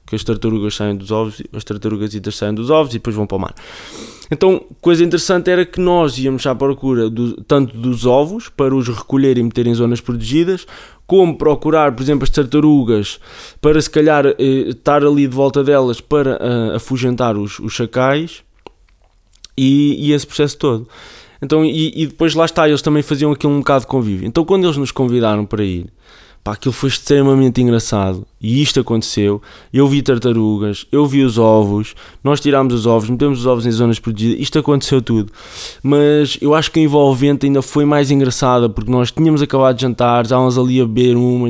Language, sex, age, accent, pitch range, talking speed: Portuguese, male, 20-39, Brazilian, 120-145 Hz, 190 wpm